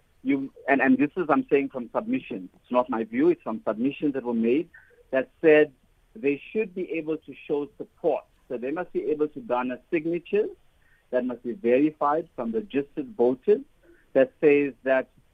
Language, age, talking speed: English, 50-69, 175 wpm